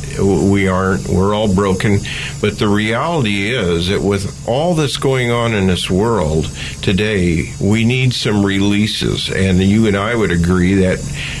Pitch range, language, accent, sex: 90-115 Hz, English, American, male